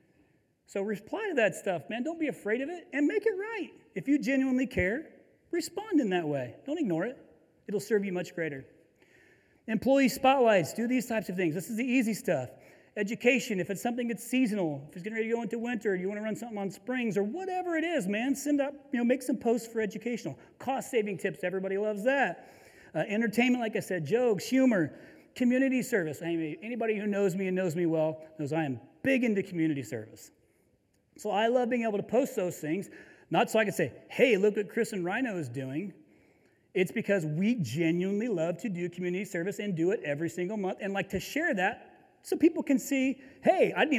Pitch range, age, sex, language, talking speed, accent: 185-255 Hz, 40-59, male, English, 215 wpm, American